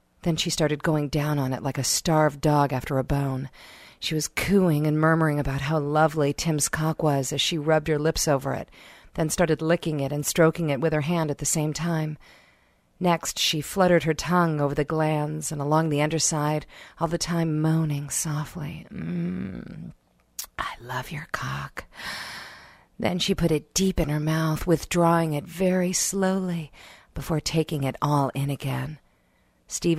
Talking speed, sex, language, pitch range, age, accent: 175 wpm, female, English, 140-165 Hz, 40-59, American